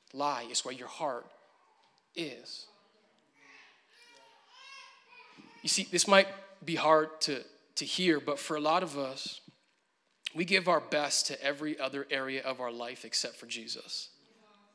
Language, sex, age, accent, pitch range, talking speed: English, male, 30-49, American, 145-190 Hz, 140 wpm